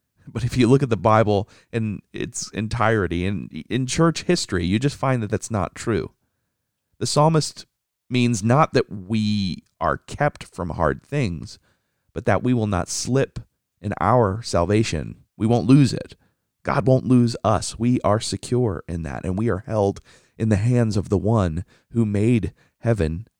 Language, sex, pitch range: English, male, 90-120 Hz